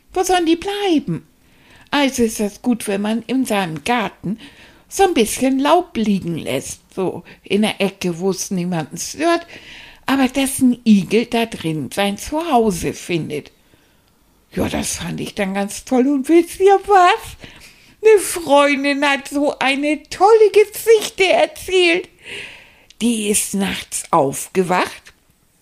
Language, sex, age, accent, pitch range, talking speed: German, female, 60-79, German, 195-265 Hz, 140 wpm